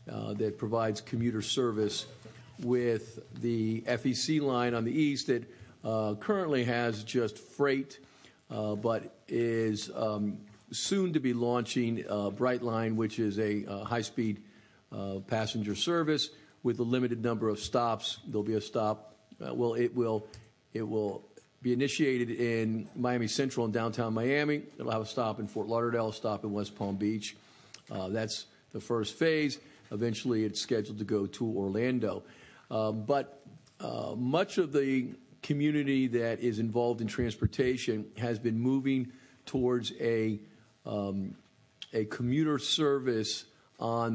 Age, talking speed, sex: 50-69, 145 wpm, male